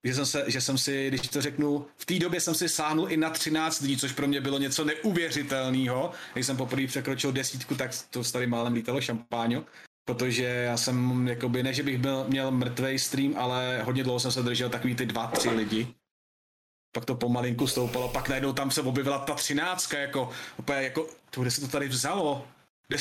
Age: 30-49